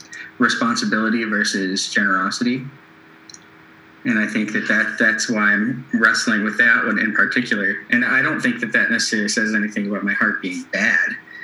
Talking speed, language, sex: 165 wpm, English, male